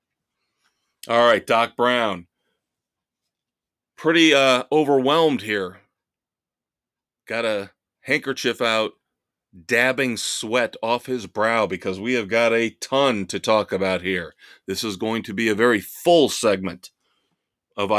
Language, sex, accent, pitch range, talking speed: English, male, American, 105-130 Hz, 125 wpm